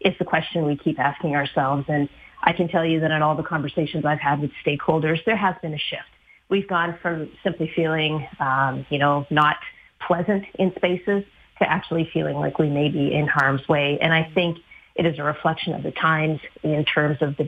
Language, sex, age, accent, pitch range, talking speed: English, female, 30-49, American, 150-170 Hz, 215 wpm